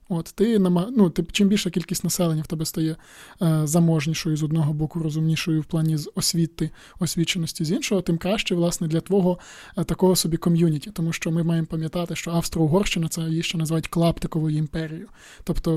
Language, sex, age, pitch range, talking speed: Ukrainian, male, 20-39, 165-185 Hz, 185 wpm